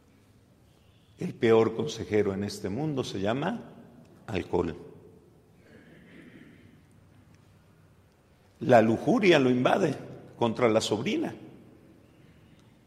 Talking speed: 75 wpm